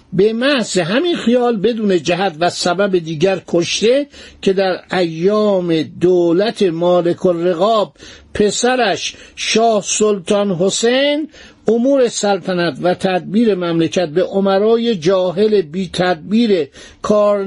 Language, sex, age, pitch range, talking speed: Persian, male, 60-79, 180-220 Hz, 105 wpm